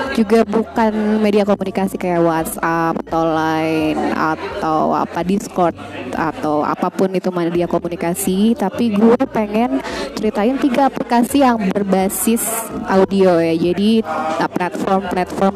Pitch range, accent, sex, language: 180-230 Hz, native, female, Indonesian